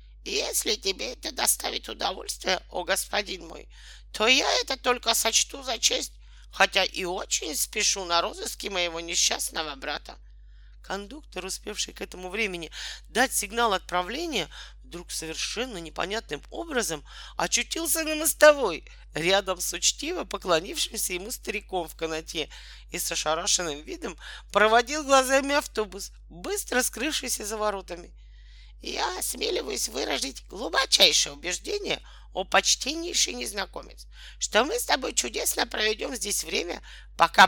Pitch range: 175-255 Hz